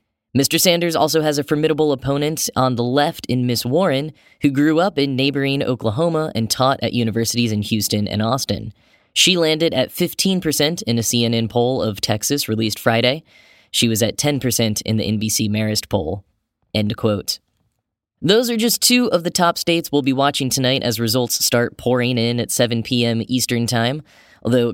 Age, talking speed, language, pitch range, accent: 10-29, 175 wpm, English, 110-145 Hz, American